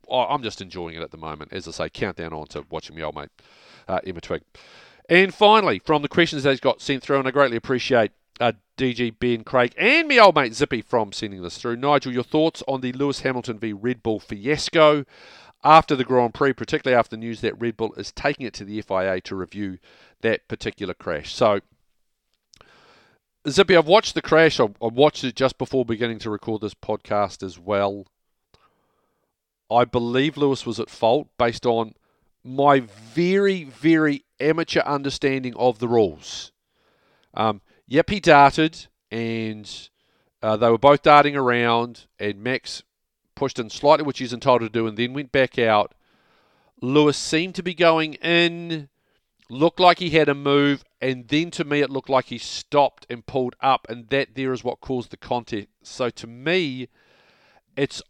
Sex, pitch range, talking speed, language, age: male, 115-145 Hz, 180 wpm, English, 40-59